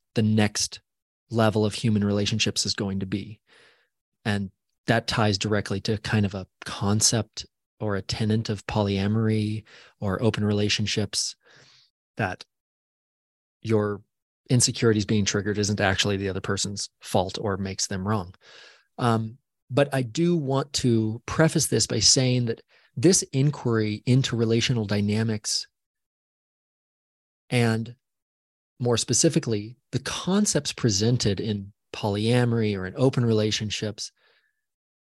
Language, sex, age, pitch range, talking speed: English, male, 20-39, 105-125 Hz, 120 wpm